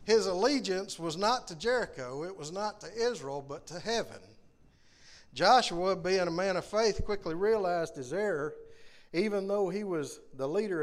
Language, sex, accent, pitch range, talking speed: English, male, American, 155-210 Hz, 165 wpm